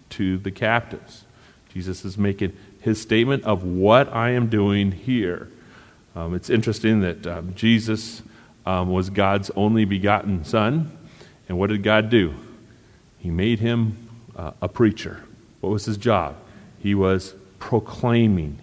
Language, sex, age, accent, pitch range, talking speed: English, male, 40-59, American, 95-125 Hz, 140 wpm